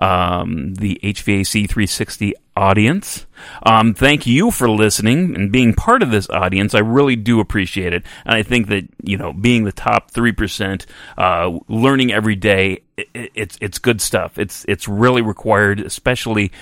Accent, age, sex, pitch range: American, 30-49, male, 95-110 Hz